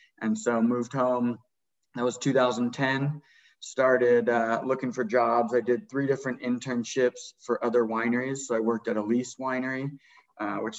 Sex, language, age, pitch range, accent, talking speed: male, English, 20-39, 110-130 Hz, American, 155 wpm